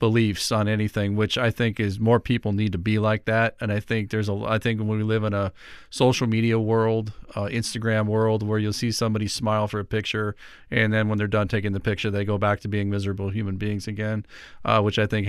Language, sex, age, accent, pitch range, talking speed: English, male, 40-59, American, 105-115 Hz, 240 wpm